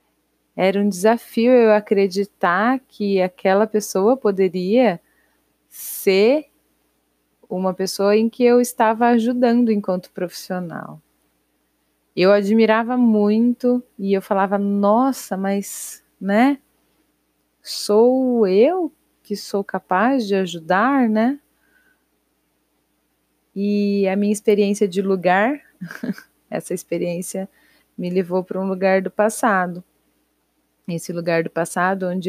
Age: 20-39